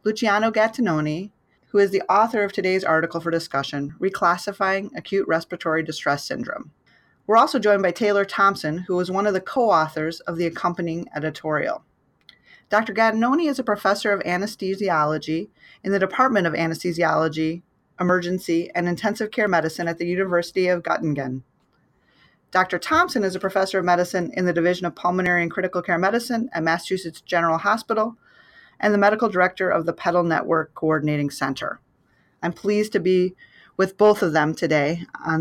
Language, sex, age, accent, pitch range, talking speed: English, female, 30-49, American, 165-205 Hz, 160 wpm